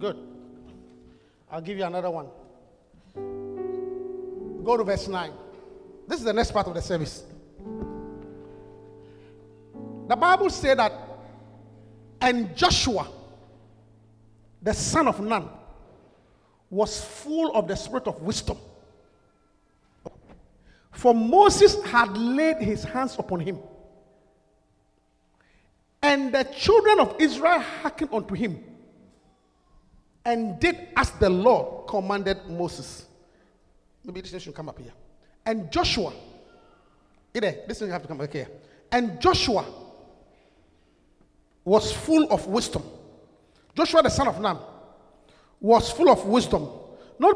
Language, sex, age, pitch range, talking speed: English, male, 50-69, 160-260 Hz, 115 wpm